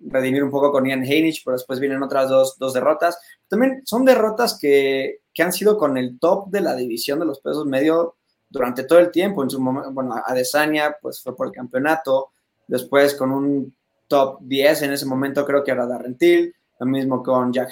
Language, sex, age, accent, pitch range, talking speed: Spanish, male, 20-39, Mexican, 130-165 Hz, 205 wpm